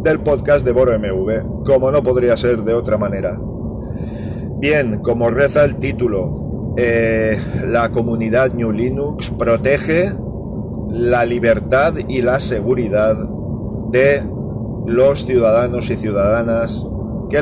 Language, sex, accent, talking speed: Spanish, male, Spanish, 115 wpm